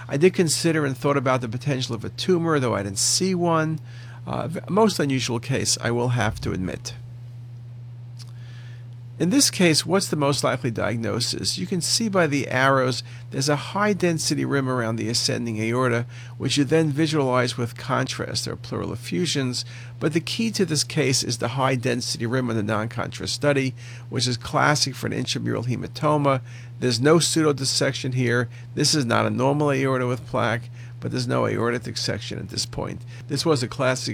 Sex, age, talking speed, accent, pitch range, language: male, 50-69, 185 wpm, American, 120-145 Hz, English